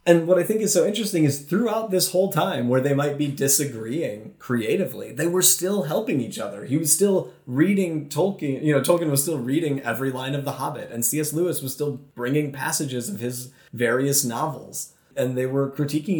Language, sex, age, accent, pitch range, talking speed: English, male, 30-49, American, 125-150 Hz, 205 wpm